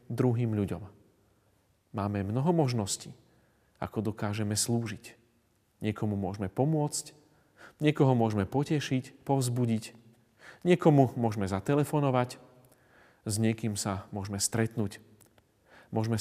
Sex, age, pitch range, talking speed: male, 40-59, 105-130 Hz, 90 wpm